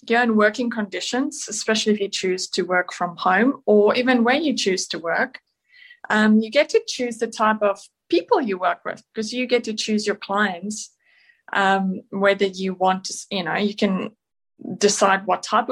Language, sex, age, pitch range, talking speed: English, female, 20-39, 185-230 Hz, 190 wpm